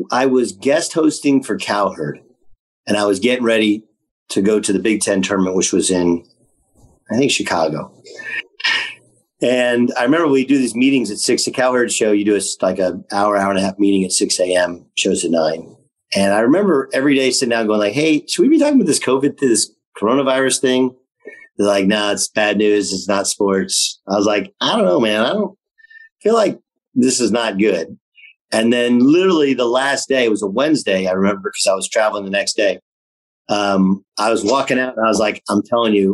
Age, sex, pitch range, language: 40-59, male, 100-130 Hz, English